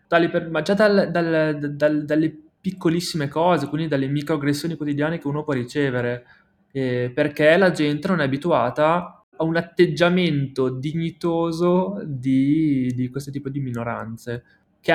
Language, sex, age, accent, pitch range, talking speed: Italian, male, 20-39, native, 135-170 Hz, 135 wpm